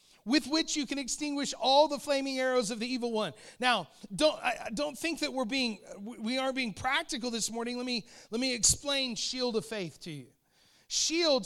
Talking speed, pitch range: 205 wpm, 225-285 Hz